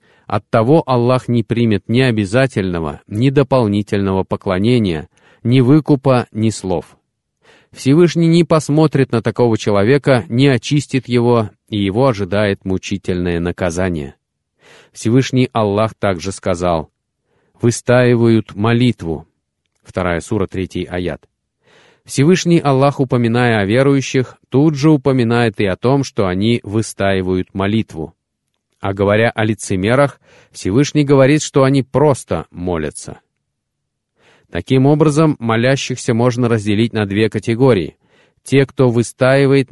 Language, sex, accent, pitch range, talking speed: Russian, male, native, 100-135 Hz, 110 wpm